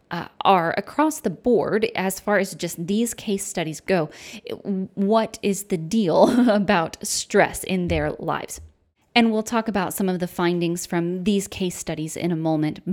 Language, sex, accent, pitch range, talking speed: English, female, American, 175-225 Hz, 170 wpm